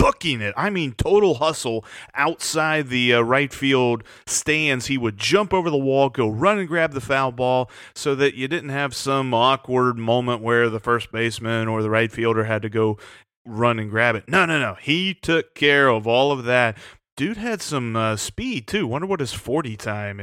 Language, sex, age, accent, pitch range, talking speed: English, male, 30-49, American, 115-155 Hz, 205 wpm